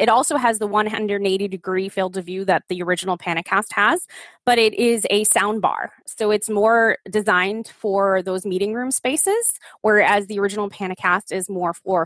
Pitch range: 195-245 Hz